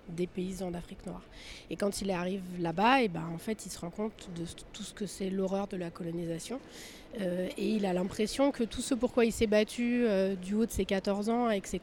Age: 30-49